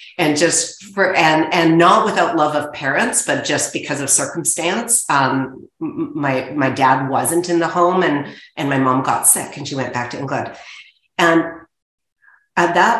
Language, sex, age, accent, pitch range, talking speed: English, female, 40-59, American, 140-190 Hz, 180 wpm